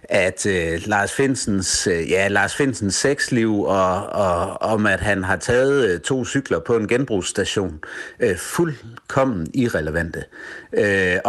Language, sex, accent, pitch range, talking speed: Danish, male, native, 90-130 Hz, 140 wpm